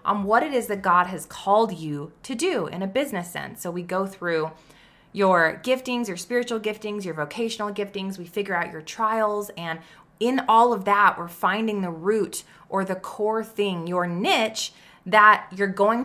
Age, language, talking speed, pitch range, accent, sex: 20-39, English, 185 wpm, 170-220 Hz, American, female